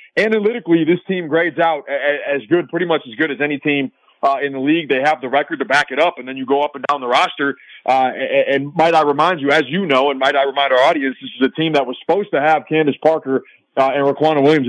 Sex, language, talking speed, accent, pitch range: male, English, 270 wpm, American, 140-170 Hz